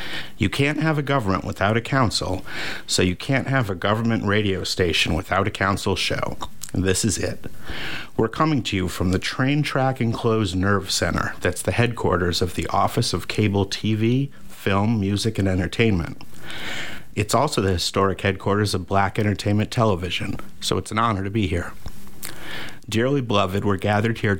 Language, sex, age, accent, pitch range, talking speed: English, male, 50-69, American, 95-115 Hz, 165 wpm